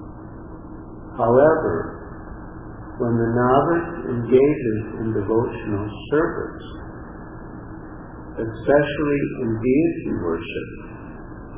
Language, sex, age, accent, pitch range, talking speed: English, male, 50-69, American, 105-125 Hz, 60 wpm